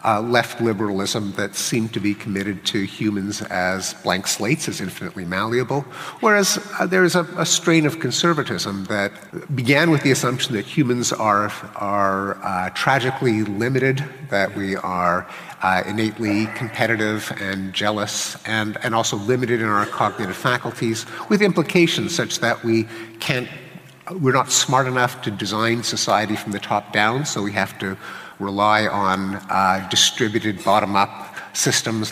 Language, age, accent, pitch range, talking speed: English, 50-69, American, 105-135 Hz, 150 wpm